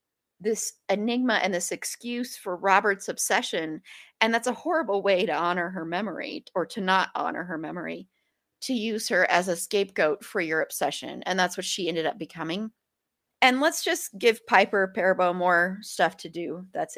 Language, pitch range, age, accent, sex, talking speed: English, 185-245 Hz, 30-49, American, female, 175 wpm